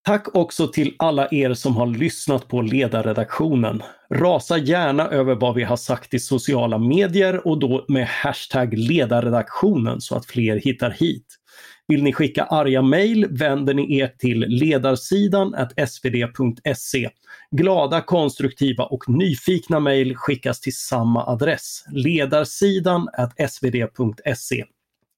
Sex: male